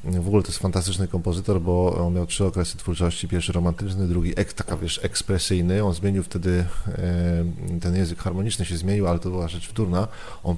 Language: Polish